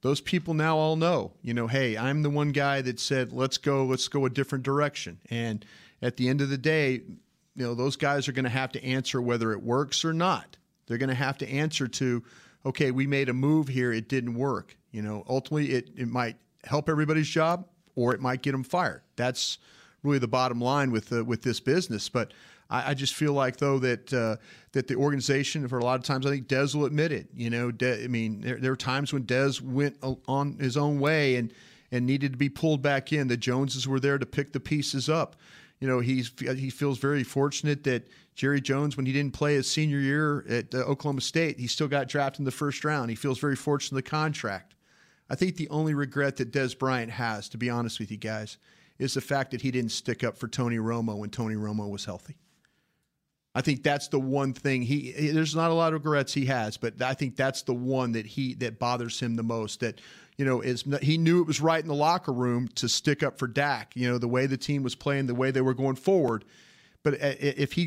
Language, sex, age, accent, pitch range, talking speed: English, male, 40-59, American, 125-145 Hz, 235 wpm